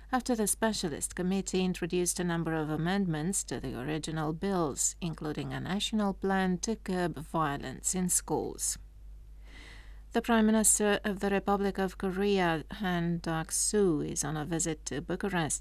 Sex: female